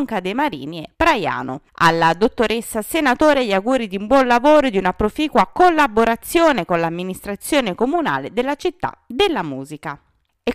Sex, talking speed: female, 150 wpm